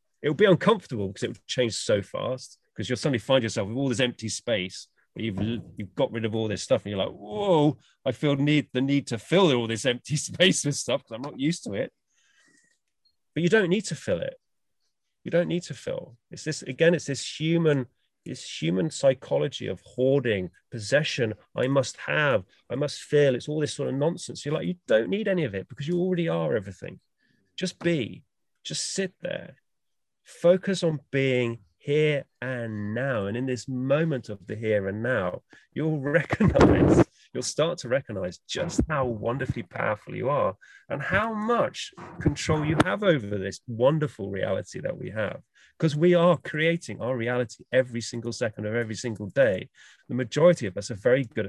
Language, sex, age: English, male, 30-49